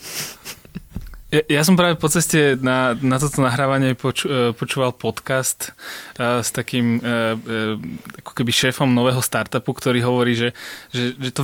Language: Slovak